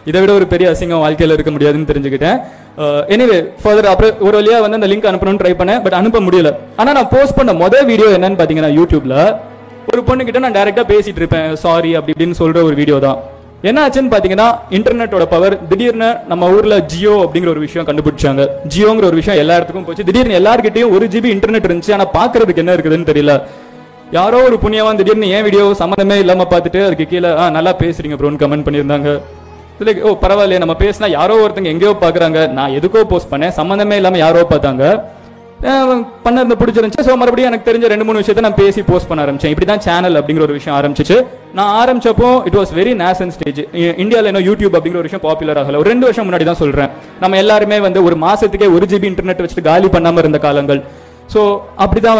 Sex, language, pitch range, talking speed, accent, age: male, Tamil, 160-210 Hz, 180 wpm, native, 20-39